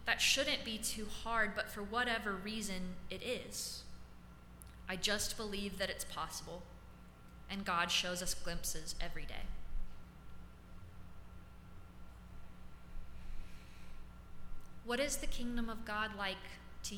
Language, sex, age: English, female, 20-39